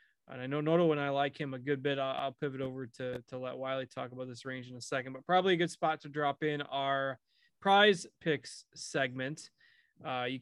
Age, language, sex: 20-39, English, male